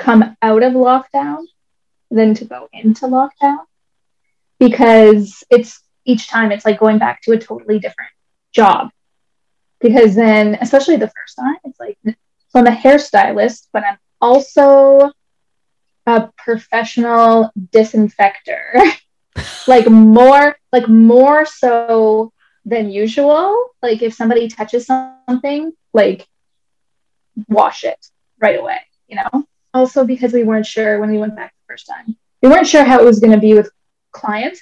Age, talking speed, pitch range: 10-29, 140 wpm, 215-260 Hz